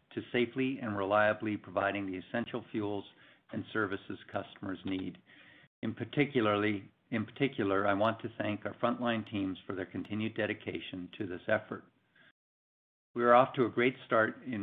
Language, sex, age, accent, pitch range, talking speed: English, male, 50-69, American, 100-120 Hz, 155 wpm